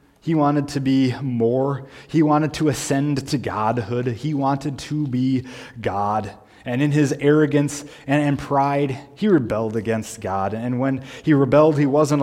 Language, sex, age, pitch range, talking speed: English, male, 20-39, 125-145 Hz, 155 wpm